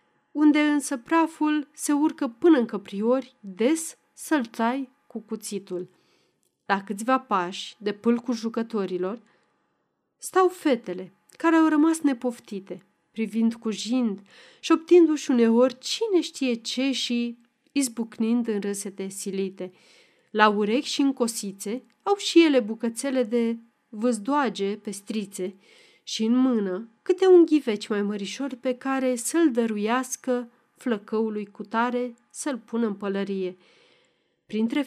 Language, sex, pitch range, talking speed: Romanian, female, 210-270 Hz, 125 wpm